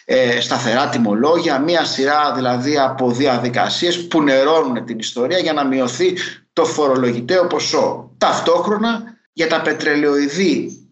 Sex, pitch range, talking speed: male, 125-190 Hz, 115 wpm